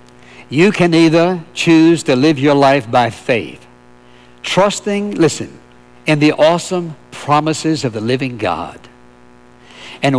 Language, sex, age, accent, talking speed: English, male, 60-79, American, 125 wpm